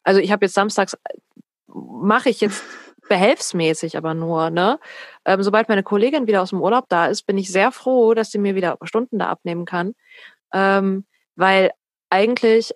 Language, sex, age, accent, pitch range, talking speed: German, female, 20-39, German, 170-200 Hz, 175 wpm